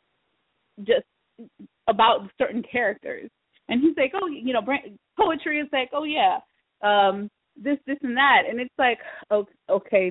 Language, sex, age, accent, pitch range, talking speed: English, female, 20-39, American, 200-265 Hz, 140 wpm